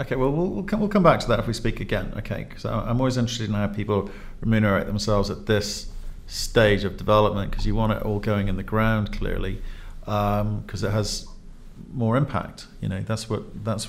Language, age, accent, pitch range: English, 50-69, British, 105-135 Hz